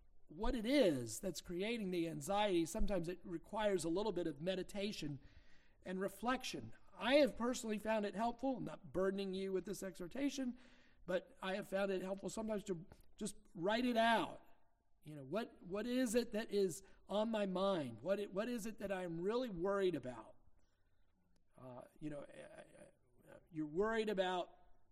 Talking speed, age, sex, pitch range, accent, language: 165 wpm, 50-69, male, 145-200 Hz, American, English